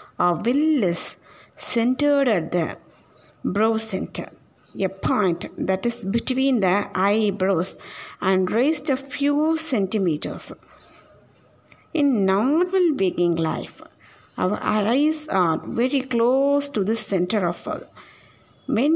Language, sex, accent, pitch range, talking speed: Tamil, female, native, 200-275 Hz, 110 wpm